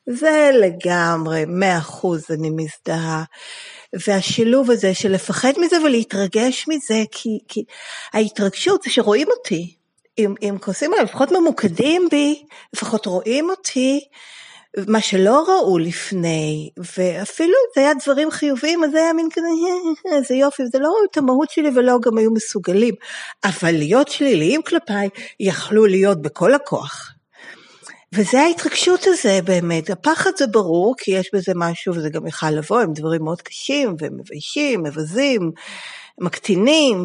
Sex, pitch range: female, 185-295 Hz